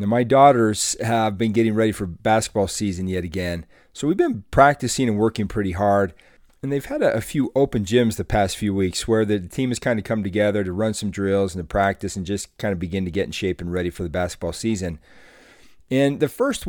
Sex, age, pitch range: male, 40-59, 95-120 Hz